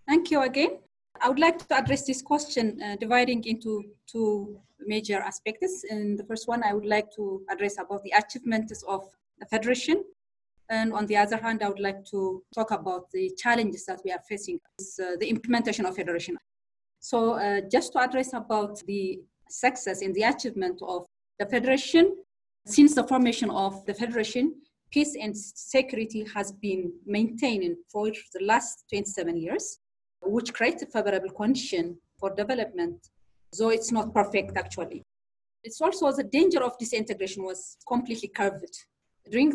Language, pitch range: English, 195-245 Hz